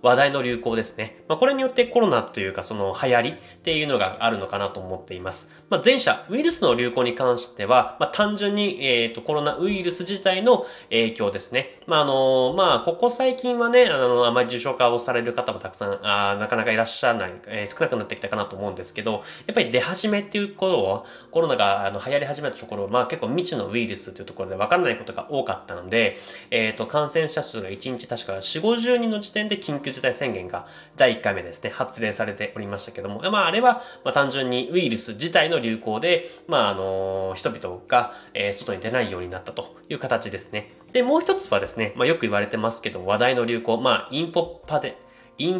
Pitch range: 105-180 Hz